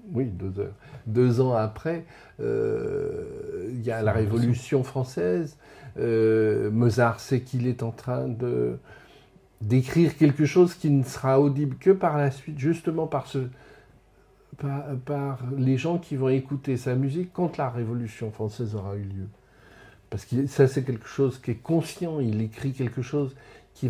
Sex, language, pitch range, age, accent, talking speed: male, French, 110-140 Hz, 60-79, French, 165 wpm